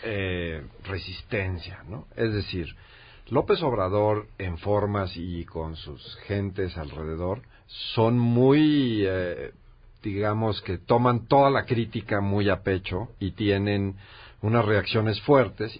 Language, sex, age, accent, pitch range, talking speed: Spanish, male, 50-69, Mexican, 90-110 Hz, 120 wpm